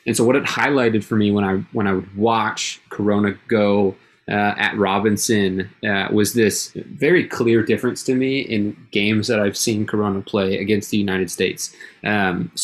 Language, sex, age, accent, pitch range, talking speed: English, male, 20-39, American, 100-110 Hz, 180 wpm